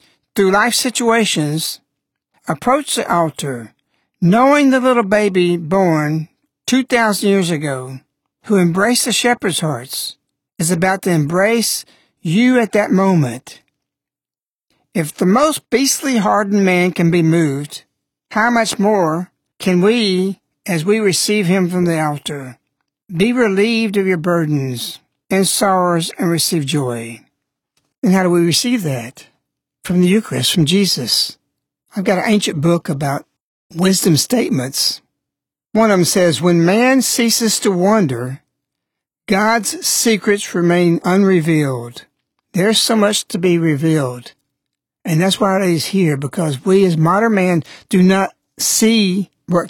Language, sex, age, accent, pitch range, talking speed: English, male, 60-79, American, 155-210 Hz, 135 wpm